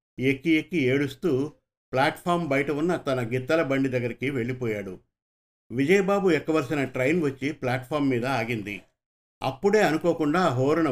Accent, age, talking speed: native, 50-69, 115 wpm